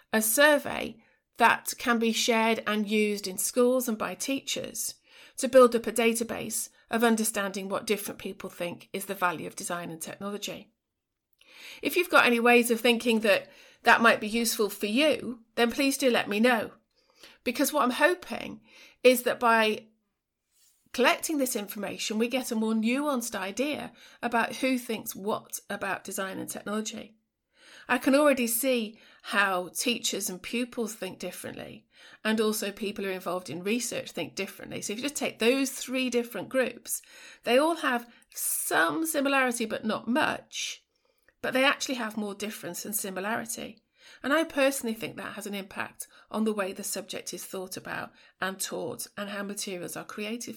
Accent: British